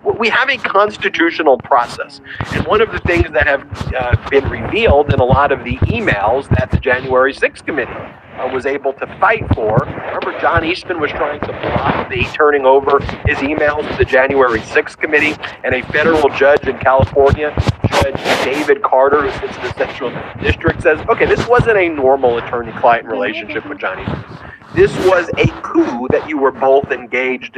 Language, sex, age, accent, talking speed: English, male, 40-59, American, 180 wpm